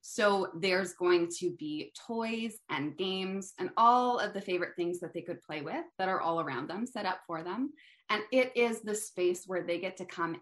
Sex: female